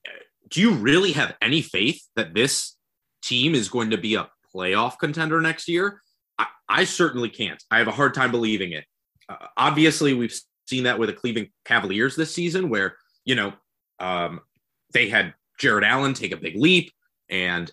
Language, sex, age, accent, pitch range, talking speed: English, male, 30-49, American, 105-150 Hz, 180 wpm